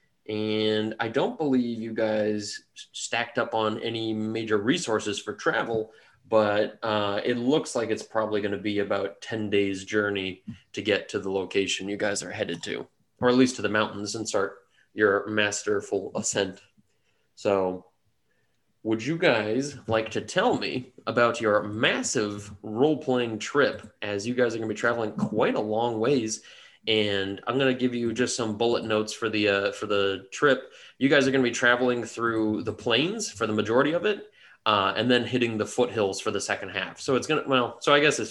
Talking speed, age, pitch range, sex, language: 190 wpm, 20-39, 105-125 Hz, male, English